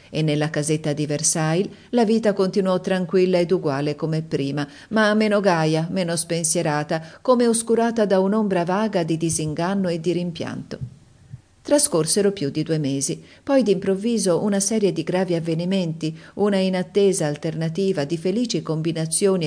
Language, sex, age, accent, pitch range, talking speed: Italian, female, 50-69, native, 155-195 Hz, 140 wpm